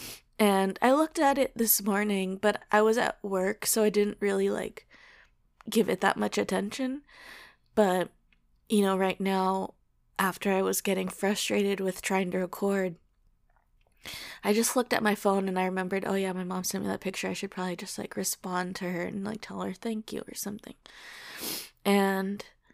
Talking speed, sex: 185 wpm, female